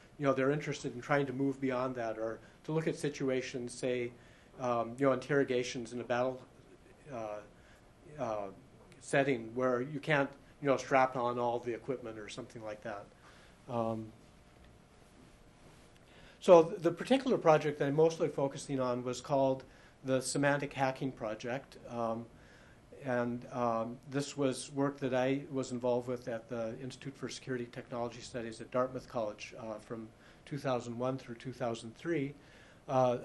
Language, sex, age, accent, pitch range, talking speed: English, male, 50-69, American, 120-135 Hz, 150 wpm